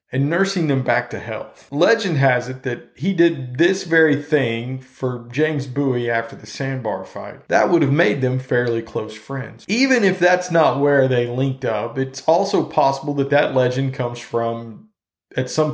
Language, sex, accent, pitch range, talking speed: English, male, American, 115-155 Hz, 185 wpm